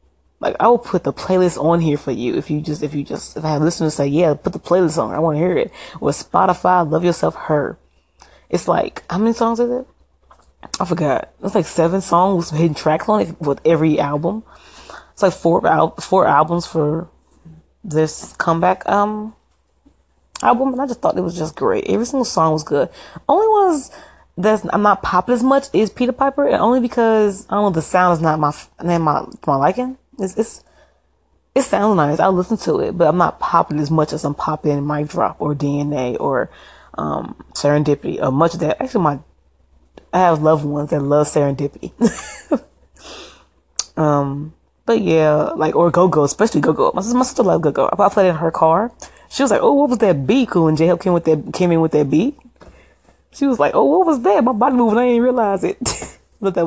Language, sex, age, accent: English, female, 20-39, American